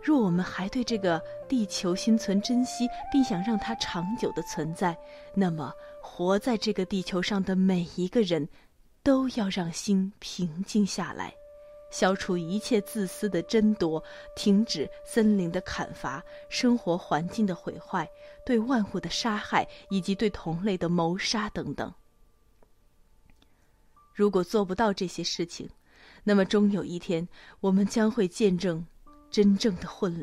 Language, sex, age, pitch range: Vietnamese, female, 30-49, 180-240 Hz